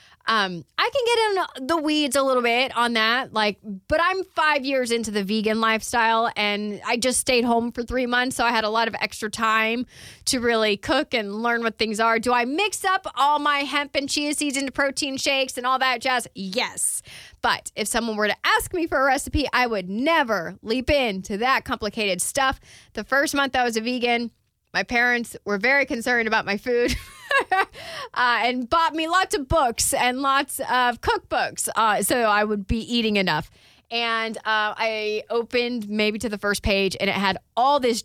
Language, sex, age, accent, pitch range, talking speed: English, female, 30-49, American, 210-265 Hz, 200 wpm